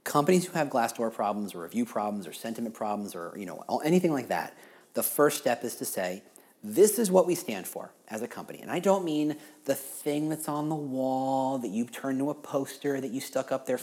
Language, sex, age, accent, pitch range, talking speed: English, male, 40-59, American, 115-150 Hz, 235 wpm